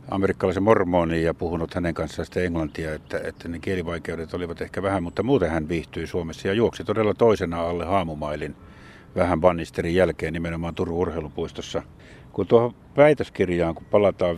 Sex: male